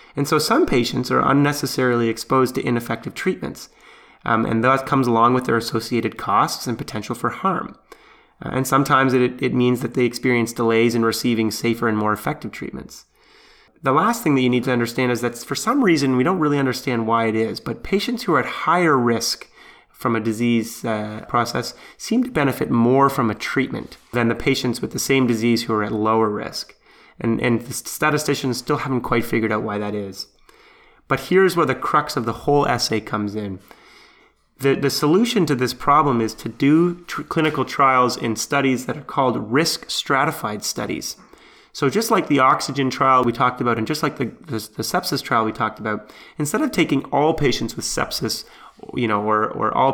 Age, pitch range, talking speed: 30-49, 115-140 Hz, 195 wpm